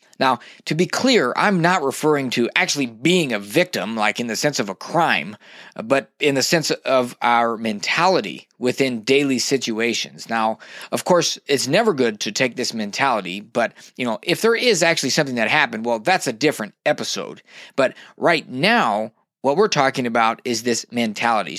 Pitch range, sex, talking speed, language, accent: 120-160 Hz, male, 180 wpm, English, American